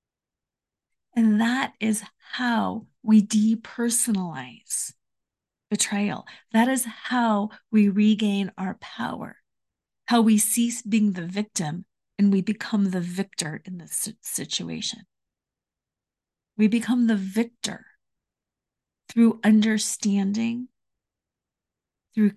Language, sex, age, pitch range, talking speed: English, female, 30-49, 200-235 Hz, 95 wpm